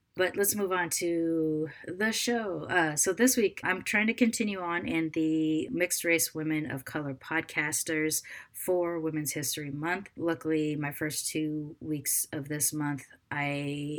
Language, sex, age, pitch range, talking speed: English, female, 30-49, 135-160 Hz, 160 wpm